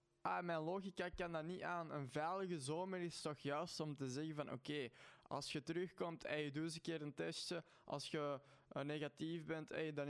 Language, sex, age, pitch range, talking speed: Dutch, male, 20-39, 140-160 Hz, 210 wpm